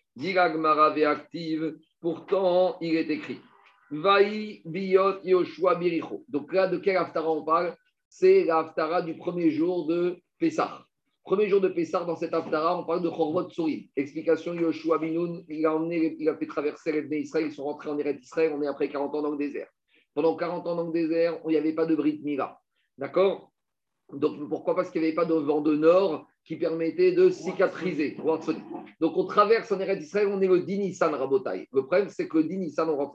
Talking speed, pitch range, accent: 200 wpm, 155-190 Hz, French